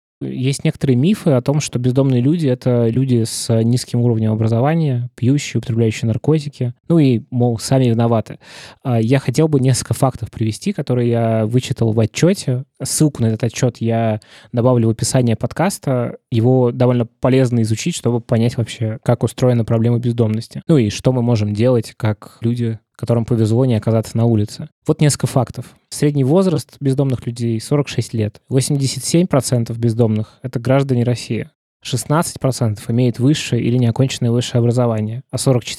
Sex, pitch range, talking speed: male, 115-135 Hz, 150 wpm